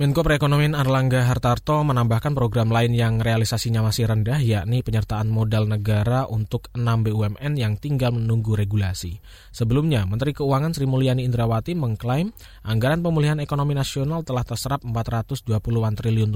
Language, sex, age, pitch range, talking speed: Indonesian, male, 20-39, 110-140 Hz, 135 wpm